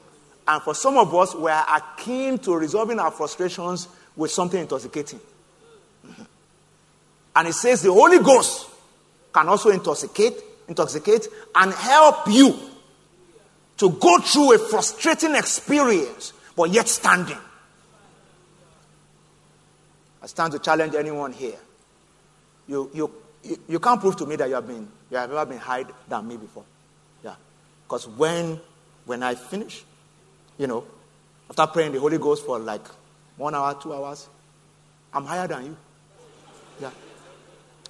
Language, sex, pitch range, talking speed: English, male, 155-245 Hz, 140 wpm